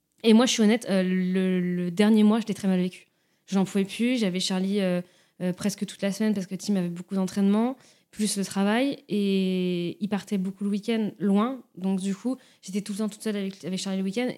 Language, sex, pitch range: French, female, 185-220 Hz